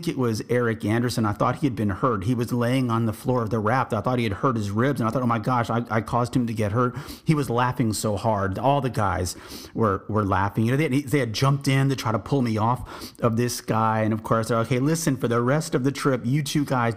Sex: male